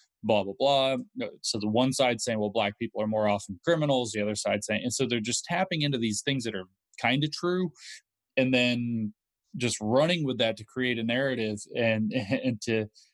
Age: 20-39